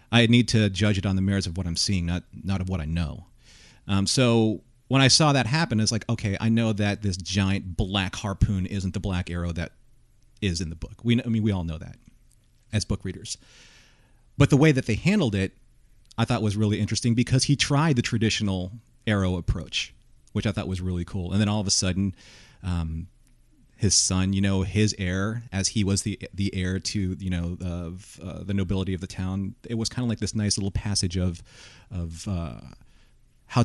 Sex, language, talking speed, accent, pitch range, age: male, English, 215 wpm, American, 95-115 Hz, 40-59